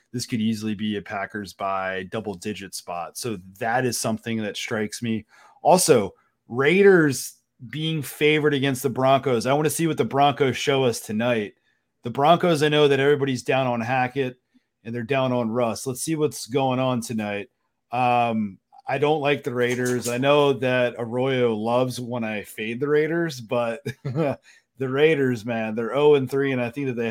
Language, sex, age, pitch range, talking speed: English, male, 40-59, 110-135 Hz, 175 wpm